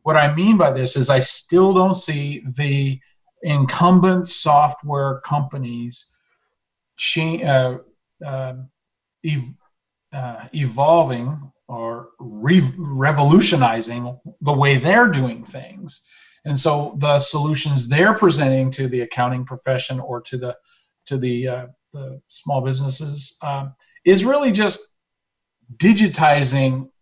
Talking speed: 100 wpm